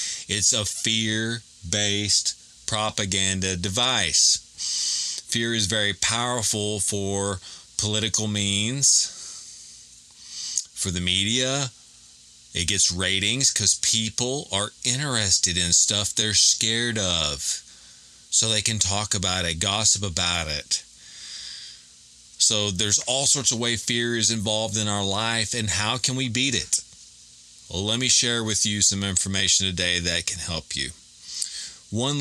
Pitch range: 90-115 Hz